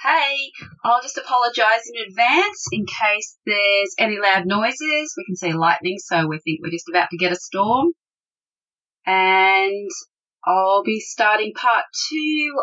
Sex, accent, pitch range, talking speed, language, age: female, Australian, 180-240 Hz, 150 wpm, English, 30-49